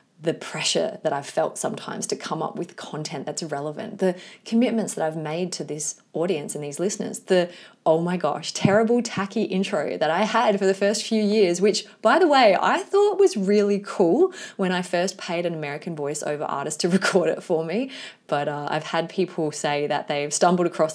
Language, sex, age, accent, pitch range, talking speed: English, female, 20-39, Australian, 160-215 Hz, 205 wpm